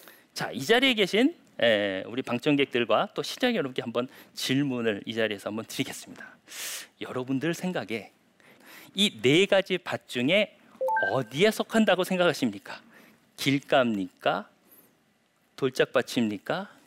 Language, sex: Korean, male